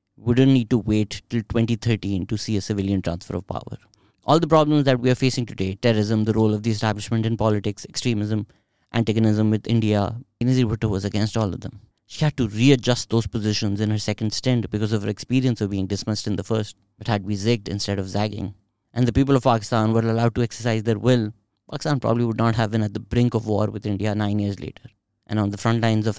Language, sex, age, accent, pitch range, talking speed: English, male, 30-49, Indian, 105-120 Hz, 230 wpm